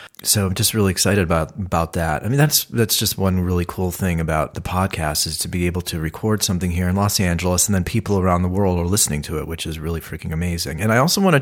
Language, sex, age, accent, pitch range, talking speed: English, male, 30-49, American, 90-105 Hz, 270 wpm